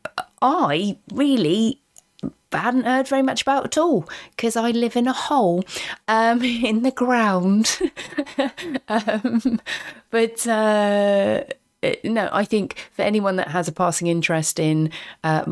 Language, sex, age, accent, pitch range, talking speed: English, female, 30-49, British, 160-240 Hz, 130 wpm